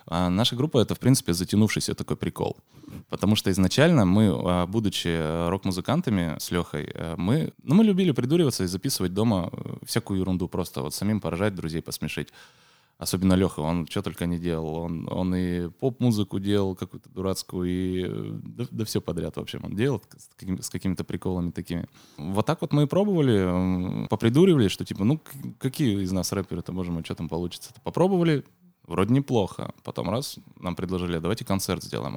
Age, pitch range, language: 20-39, 85-110 Hz, Russian